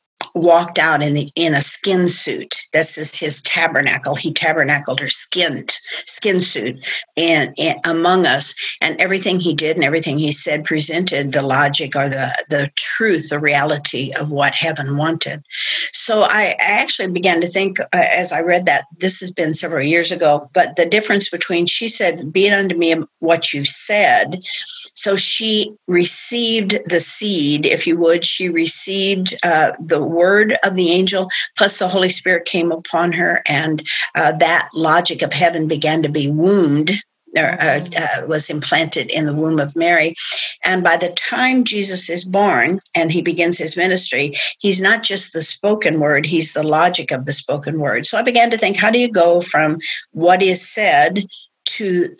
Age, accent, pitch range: 50-69, American, 155-195 Hz